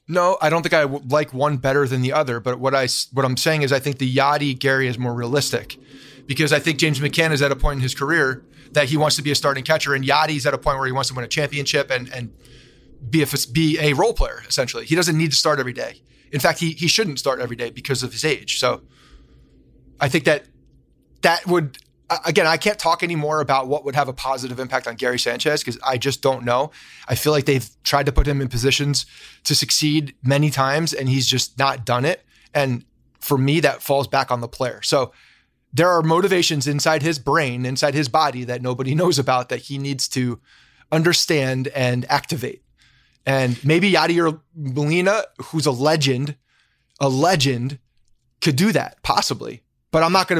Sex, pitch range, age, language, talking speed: male, 130-155 Hz, 30-49, English, 210 wpm